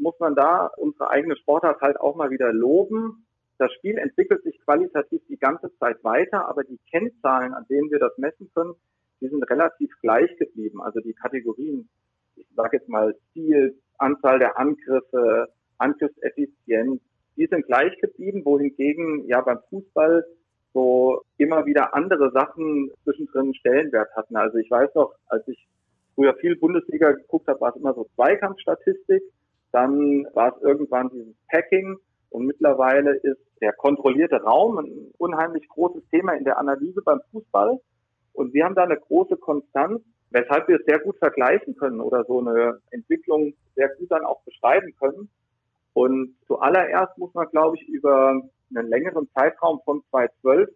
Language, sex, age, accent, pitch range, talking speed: German, male, 40-59, German, 130-195 Hz, 160 wpm